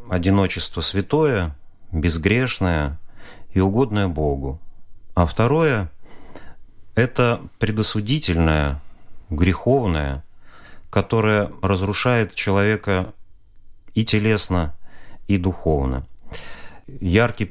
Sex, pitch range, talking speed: male, 85-105 Hz, 65 wpm